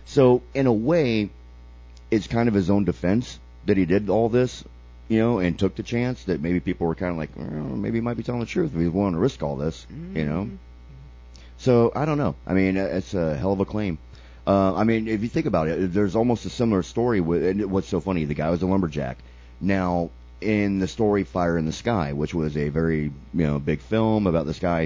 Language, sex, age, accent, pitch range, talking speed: English, male, 30-49, American, 75-95 Hz, 240 wpm